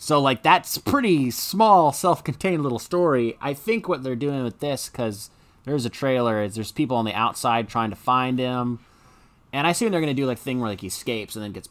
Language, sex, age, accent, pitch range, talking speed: English, male, 30-49, American, 105-135 Hz, 225 wpm